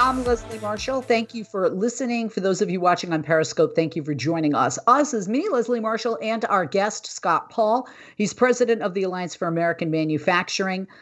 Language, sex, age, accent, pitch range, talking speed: English, female, 50-69, American, 150-195 Hz, 200 wpm